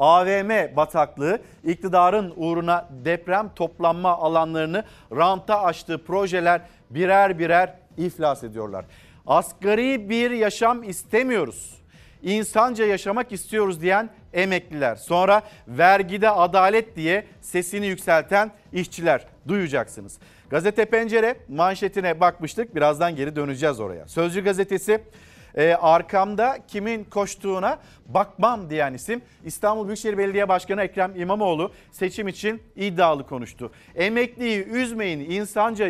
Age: 40-59